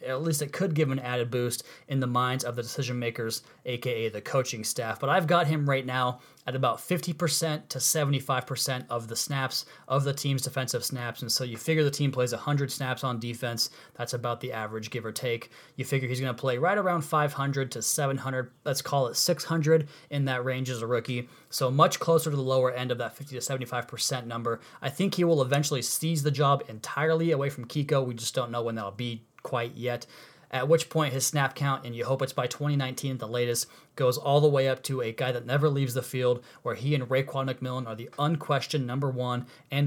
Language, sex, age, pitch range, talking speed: English, male, 20-39, 125-145 Hz, 225 wpm